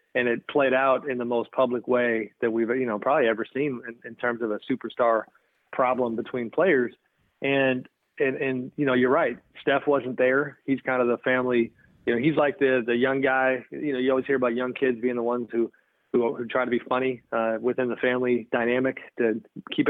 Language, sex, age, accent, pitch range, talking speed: English, male, 30-49, American, 120-130 Hz, 220 wpm